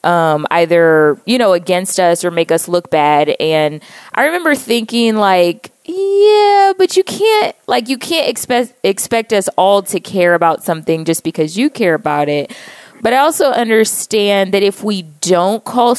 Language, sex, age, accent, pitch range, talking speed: English, female, 20-39, American, 175-240 Hz, 170 wpm